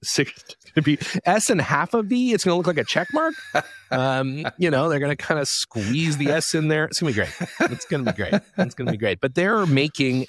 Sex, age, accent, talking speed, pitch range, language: male, 30-49, American, 240 wpm, 105-145 Hz, English